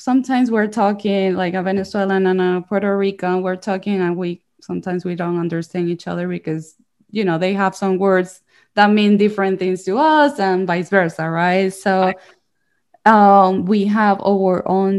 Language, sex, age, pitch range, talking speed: English, female, 20-39, 175-200 Hz, 170 wpm